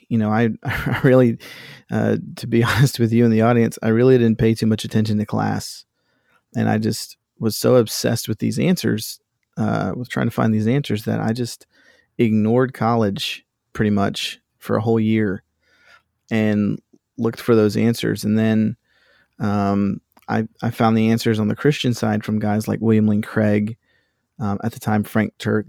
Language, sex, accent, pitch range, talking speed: English, male, American, 105-115 Hz, 185 wpm